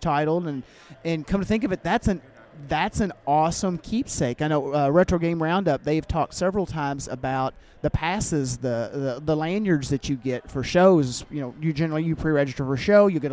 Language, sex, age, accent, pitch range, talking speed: English, male, 30-49, American, 140-175 Hz, 210 wpm